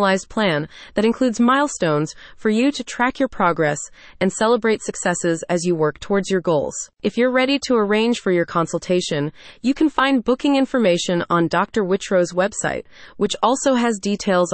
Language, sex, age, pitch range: English, female, 30-49, 170-230 Hz